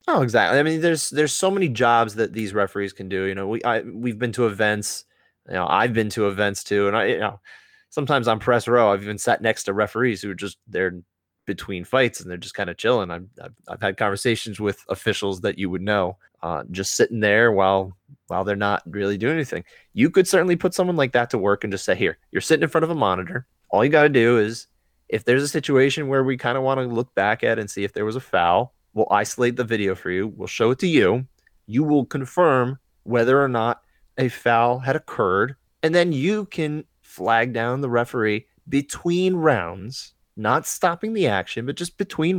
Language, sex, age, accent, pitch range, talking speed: English, male, 30-49, American, 105-140 Hz, 230 wpm